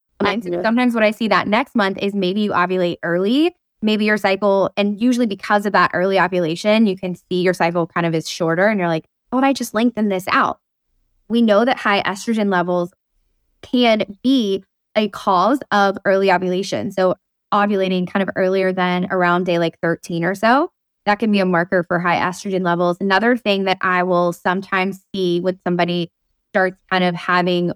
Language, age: English, 20-39